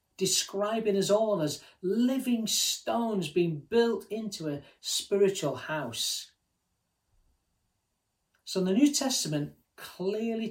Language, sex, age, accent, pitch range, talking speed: English, male, 40-59, British, 115-190 Hz, 95 wpm